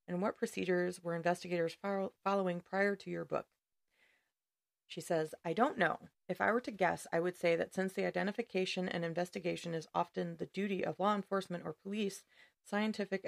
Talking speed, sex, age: 175 wpm, female, 30-49